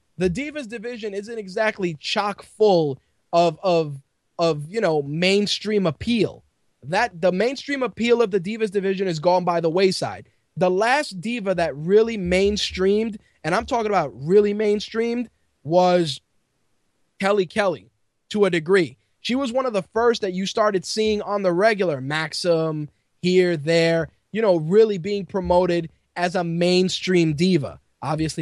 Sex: male